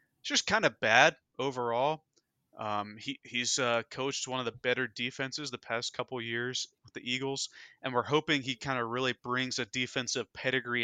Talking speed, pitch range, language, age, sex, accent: 190 wpm, 115-130 Hz, English, 20-39, male, American